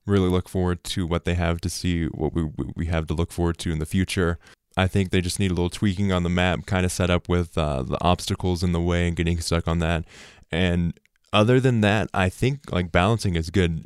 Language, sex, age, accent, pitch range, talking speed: English, male, 20-39, American, 85-95 Hz, 245 wpm